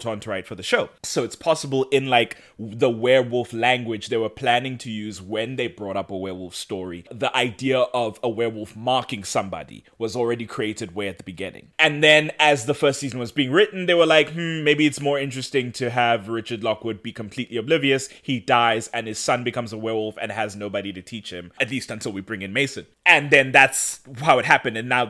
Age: 20-39